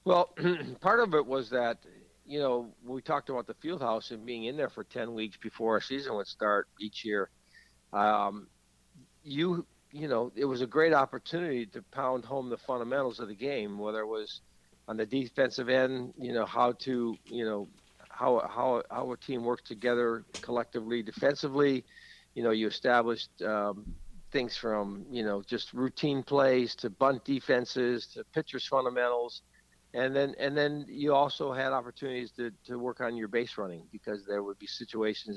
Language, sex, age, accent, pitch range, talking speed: English, male, 60-79, American, 110-135 Hz, 180 wpm